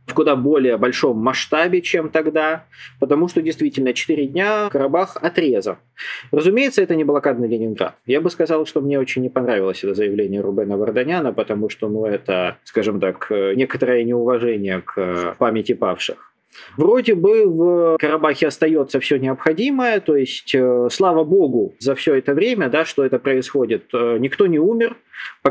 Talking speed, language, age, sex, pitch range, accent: 155 wpm, Russian, 20-39, male, 120-155 Hz, native